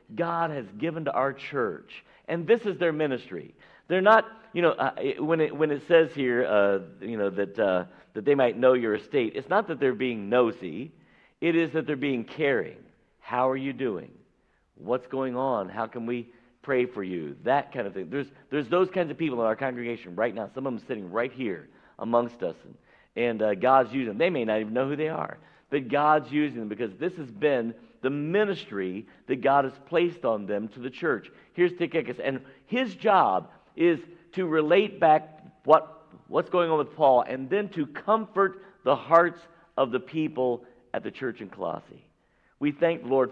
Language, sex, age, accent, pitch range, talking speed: English, male, 50-69, American, 125-165 Hz, 205 wpm